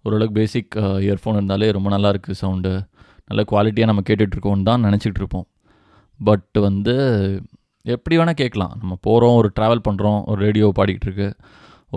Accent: native